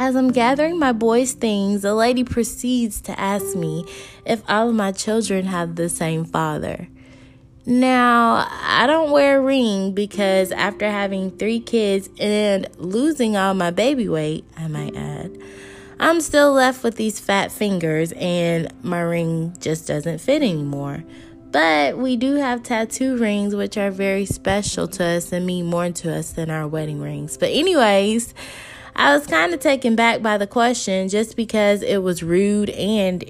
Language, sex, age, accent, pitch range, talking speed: English, female, 20-39, American, 175-255 Hz, 170 wpm